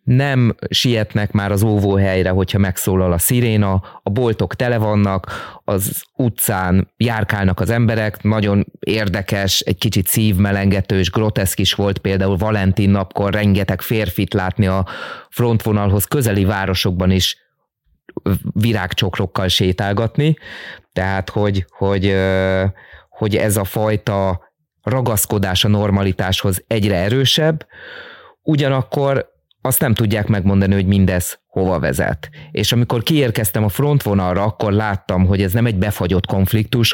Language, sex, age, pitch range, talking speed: Hungarian, male, 20-39, 95-110 Hz, 120 wpm